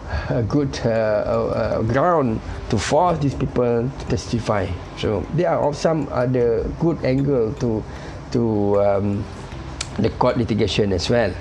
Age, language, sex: 50-69, English, male